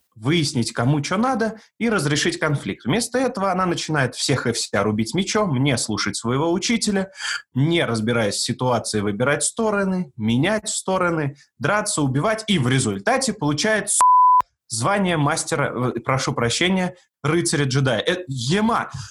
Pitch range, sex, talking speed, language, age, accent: 135-195 Hz, male, 130 wpm, Russian, 20-39, native